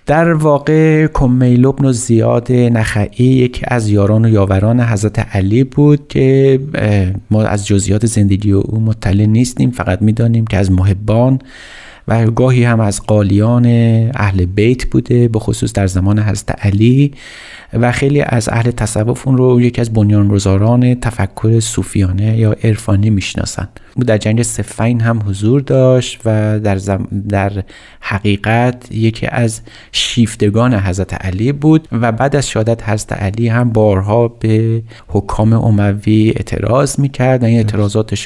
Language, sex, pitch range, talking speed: Persian, male, 100-120 Hz, 145 wpm